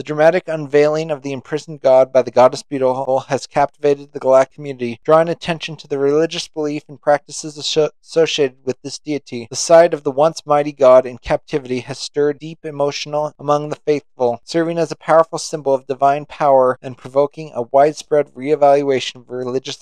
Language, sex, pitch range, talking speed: English, male, 135-155 Hz, 180 wpm